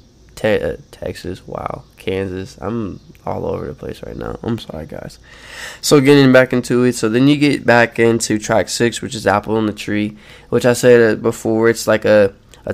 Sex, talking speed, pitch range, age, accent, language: male, 190 wpm, 110-120 Hz, 20-39, American, English